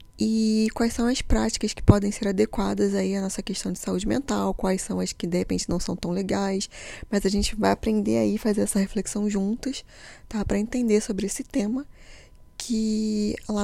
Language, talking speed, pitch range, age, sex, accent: Portuguese, 195 wpm, 185-215 Hz, 10-29, female, Brazilian